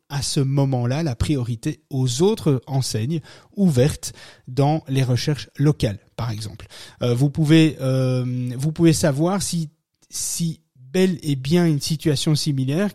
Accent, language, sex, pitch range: French, French, male, 120-155 Hz